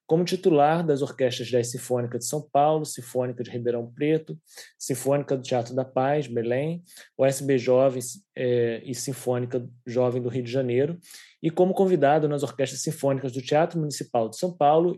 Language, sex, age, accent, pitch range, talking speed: Portuguese, male, 20-39, Brazilian, 130-160 Hz, 165 wpm